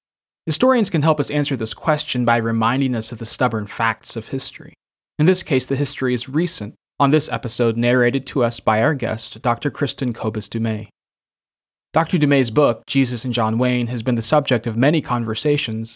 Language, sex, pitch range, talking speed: English, male, 115-145 Hz, 185 wpm